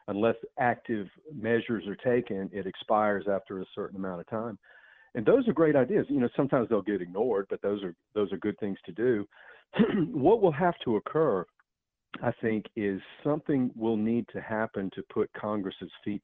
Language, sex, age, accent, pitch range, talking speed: English, male, 50-69, American, 95-115 Hz, 185 wpm